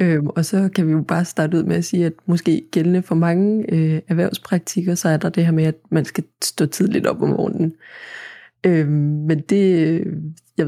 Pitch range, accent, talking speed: 155-180 Hz, native, 200 wpm